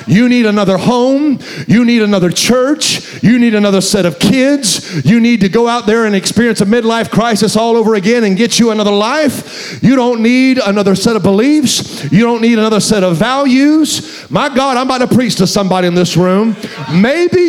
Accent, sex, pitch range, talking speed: American, male, 200-265 Hz, 200 wpm